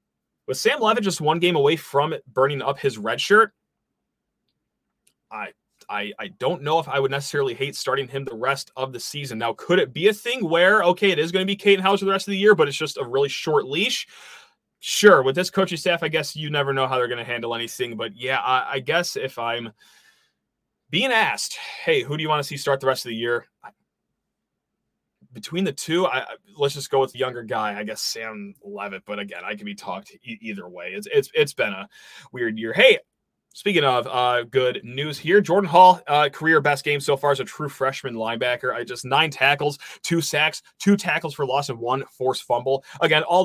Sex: male